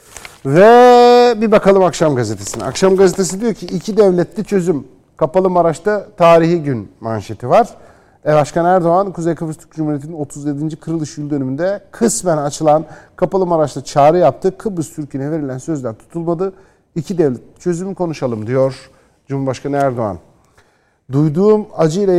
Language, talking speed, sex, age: Turkish, 135 wpm, male, 50-69